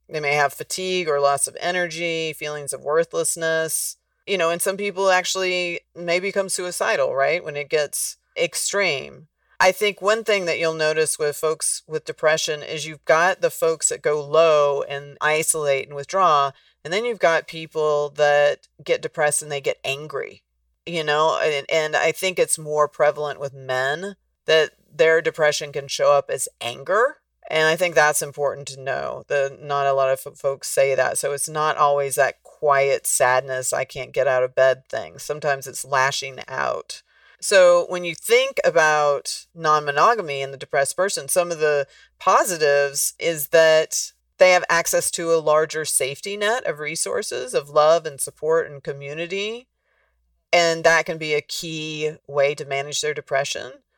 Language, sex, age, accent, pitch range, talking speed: English, female, 40-59, American, 145-175 Hz, 170 wpm